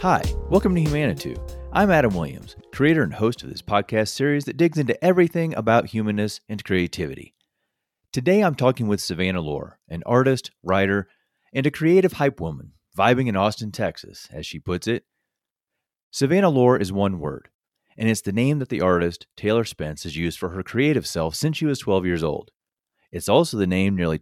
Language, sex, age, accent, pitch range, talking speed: English, male, 30-49, American, 90-130 Hz, 185 wpm